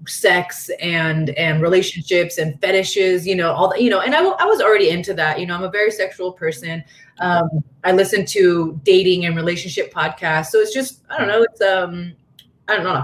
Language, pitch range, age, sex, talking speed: English, 165-215 Hz, 30-49, female, 210 wpm